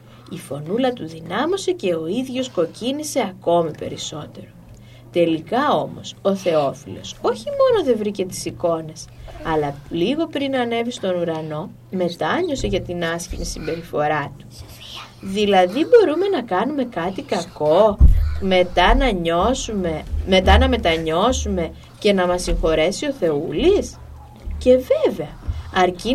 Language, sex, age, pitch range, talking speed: Greek, female, 20-39, 160-250 Hz, 125 wpm